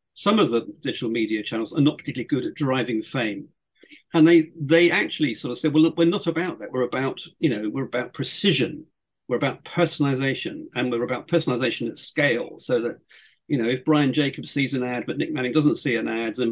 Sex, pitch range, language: male, 120-155 Hz, English